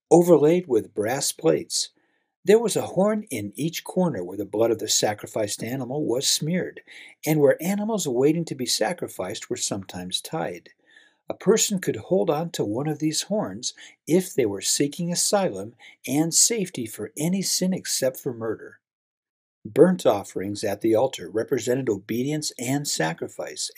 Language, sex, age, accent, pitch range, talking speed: English, male, 50-69, American, 125-185 Hz, 155 wpm